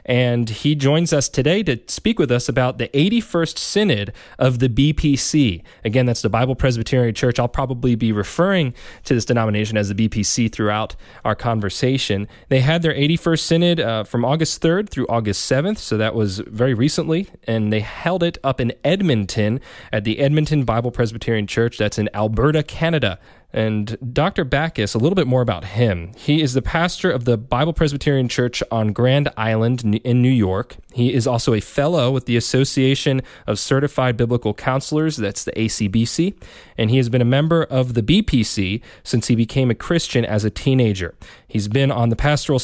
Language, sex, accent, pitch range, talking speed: English, male, American, 110-140 Hz, 185 wpm